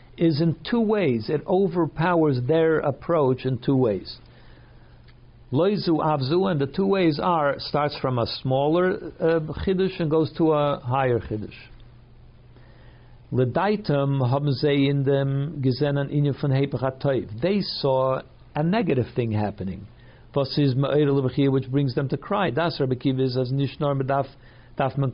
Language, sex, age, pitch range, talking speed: English, male, 60-79, 130-160 Hz, 95 wpm